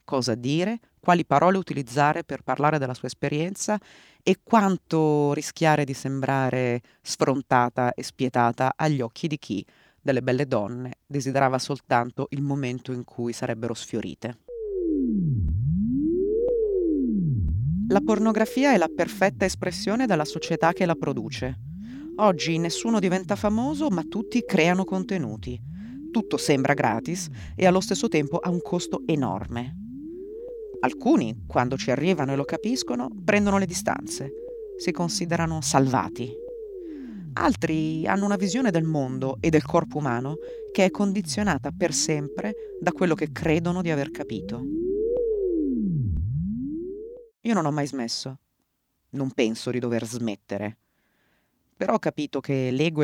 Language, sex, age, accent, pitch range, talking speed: Italian, female, 30-49, native, 135-205 Hz, 130 wpm